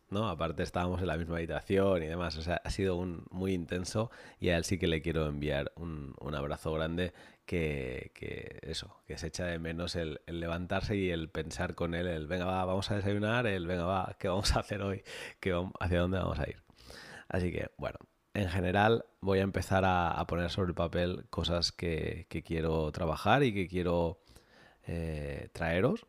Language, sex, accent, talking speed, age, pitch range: Spanish, male, Spanish, 205 wpm, 20-39, 80-100 Hz